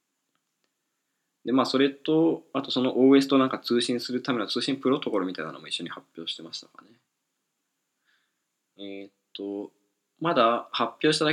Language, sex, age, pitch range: Japanese, male, 20-39, 100-130 Hz